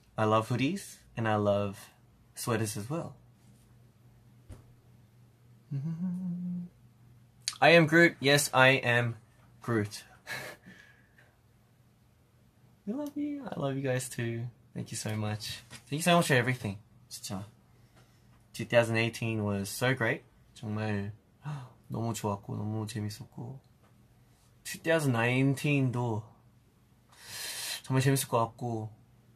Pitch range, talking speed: 115-130 Hz, 100 wpm